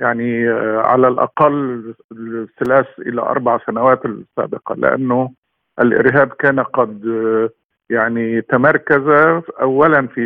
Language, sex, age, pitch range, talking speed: Arabic, male, 50-69, 125-145 Hz, 95 wpm